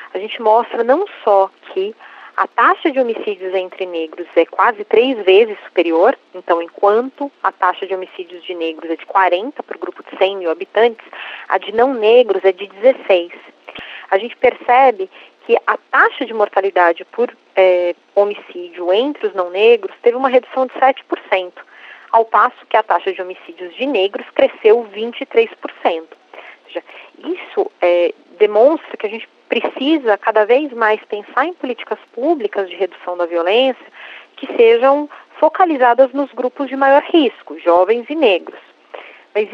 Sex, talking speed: female, 160 wpm